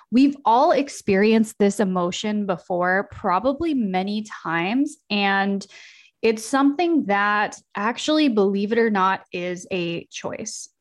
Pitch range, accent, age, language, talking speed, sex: 190-240 Hz, American, 20-39, English, 115 wpm, female